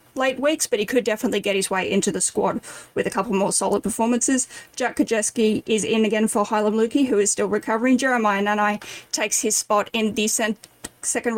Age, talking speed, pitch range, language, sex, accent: 10-29, 205 wpm, 200-235 Hz, English, female, Australian